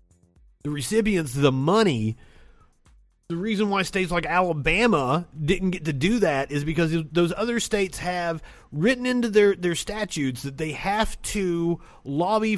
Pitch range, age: 145-205 Hz, 30-49